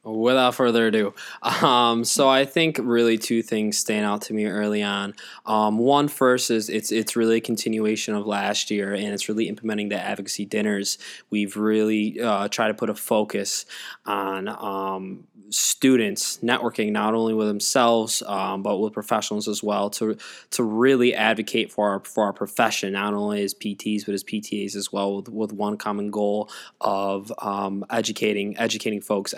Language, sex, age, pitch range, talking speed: English, male, 20-39, 100-110 Hz, 175 wpm